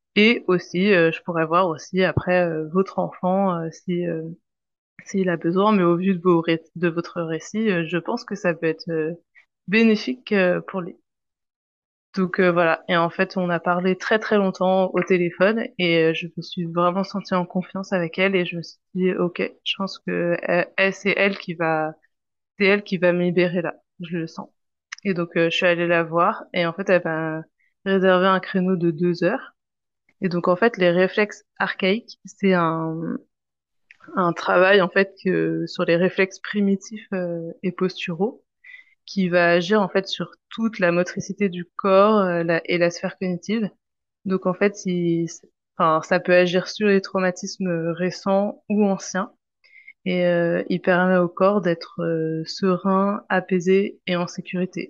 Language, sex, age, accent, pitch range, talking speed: French, female, 20-39, French, 170-195 Hz, 190 wpm